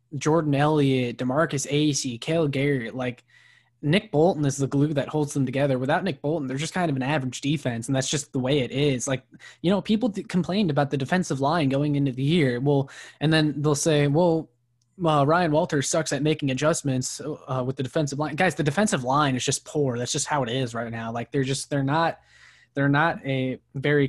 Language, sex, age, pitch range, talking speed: English, male, 10-29, 130-150 Hz, 220 wpm